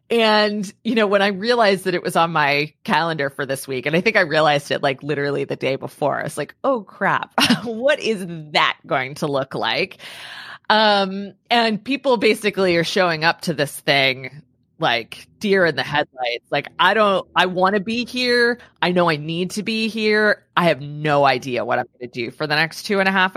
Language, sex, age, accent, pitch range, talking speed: English, female, 20-39, American, 145-205 Hz, 215 wpm